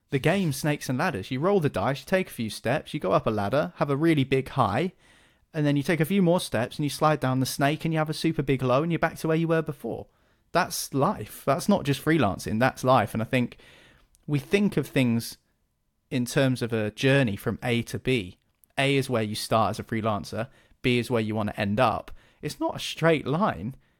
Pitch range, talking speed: 120-155 Hz, 245 wpm